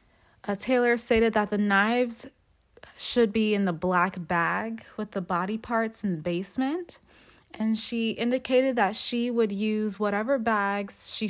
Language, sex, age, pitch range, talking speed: English, female, 20-39, 200-250 Hz, 155 wpm